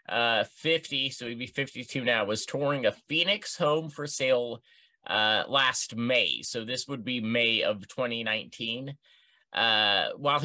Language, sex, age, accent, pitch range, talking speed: English, male, 30-49, American, 120-170 Hz, 150 wpm